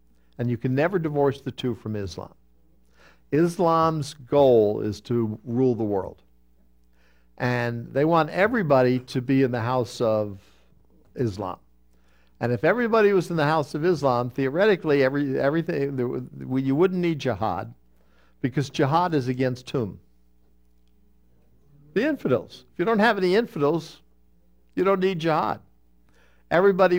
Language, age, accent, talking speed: English, 60-79, American, 140 wpm